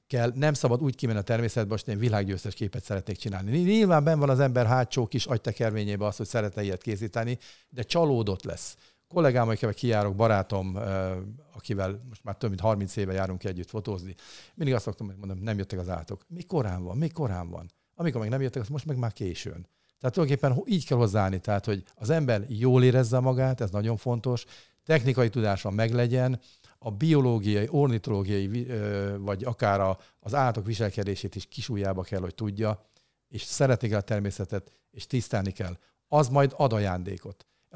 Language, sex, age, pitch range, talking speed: Hungarian, male, 50-69, 100-130 Hz, 175 wpm